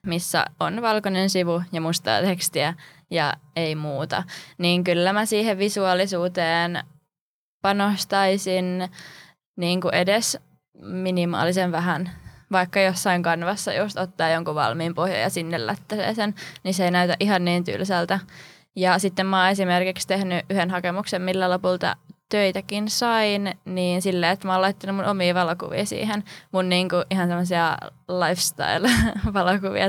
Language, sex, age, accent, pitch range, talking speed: Finnish, female, 20-39, native, 175-195 Hz, 135 wpm